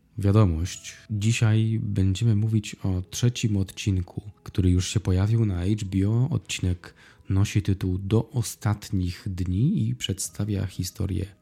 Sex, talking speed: male, 115 wpm